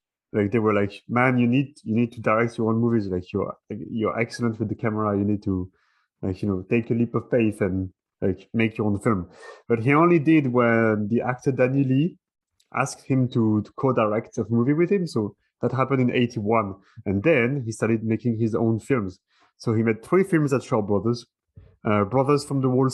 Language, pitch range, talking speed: English, 105-125 Hz, 215 wpm